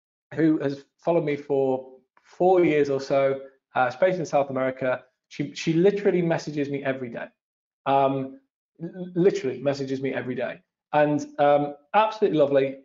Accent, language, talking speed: British, English, 145 wpm